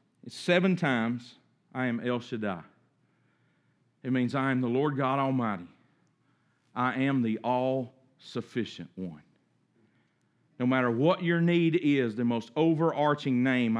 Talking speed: 125 wpm